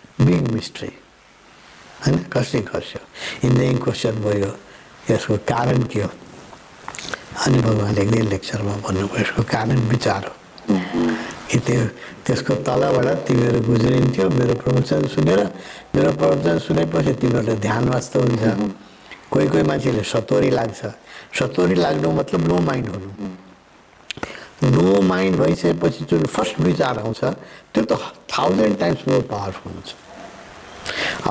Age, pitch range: 60-79, 95-120 Hz